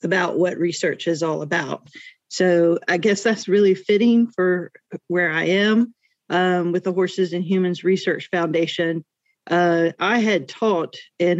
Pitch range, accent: 165-190 Hz, American